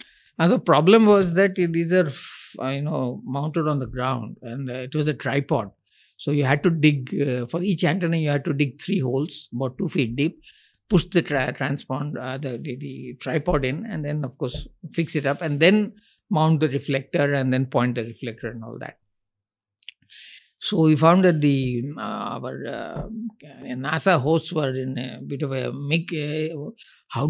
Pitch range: 130-170 Hz